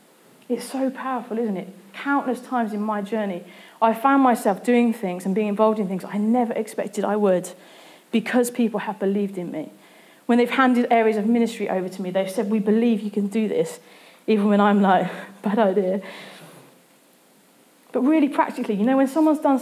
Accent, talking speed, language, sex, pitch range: British, 190 wpm, English, female, 200-245 Hz